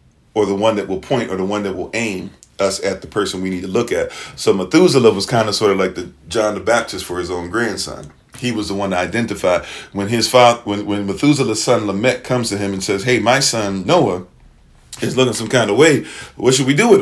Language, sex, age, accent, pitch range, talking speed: English, male, 40-59, American, 95-115 Hz, 250 wpm